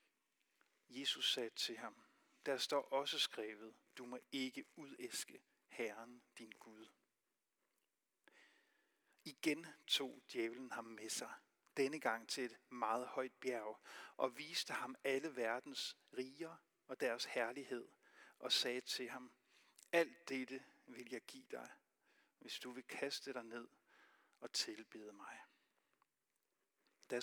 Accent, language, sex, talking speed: native, Danish, male, 125 wpm